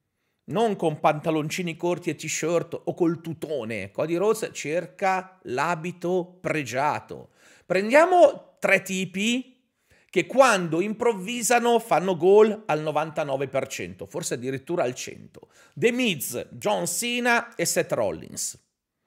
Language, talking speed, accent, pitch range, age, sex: Italian, 110 wpm, native, 165-225 Hz, 40-59, male